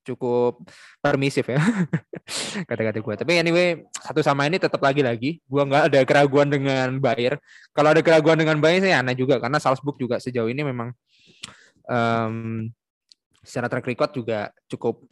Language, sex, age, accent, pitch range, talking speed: Indonesian, male, 20-39, native, 115-145 Hz, 155 wpm